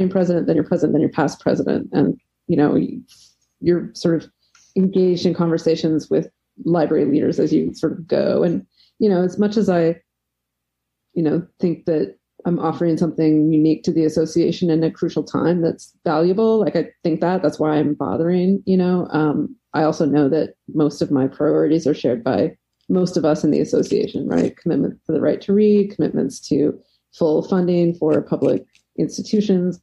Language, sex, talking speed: English, female, 185 wpm